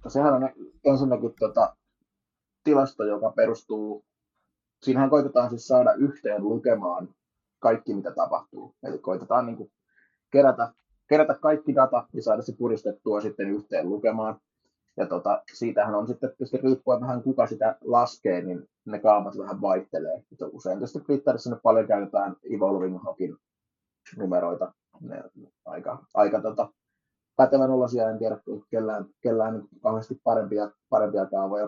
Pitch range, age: 105-130 Hz, 20-39